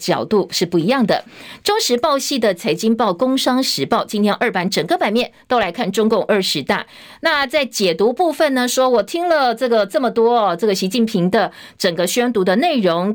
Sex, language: female, Chinese